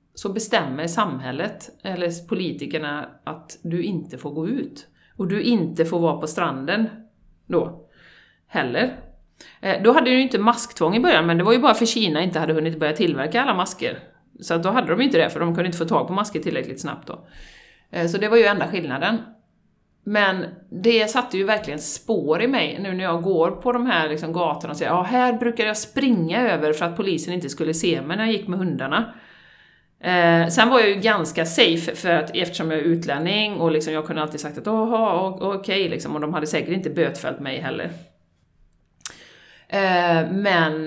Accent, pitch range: native, 160-210 Hz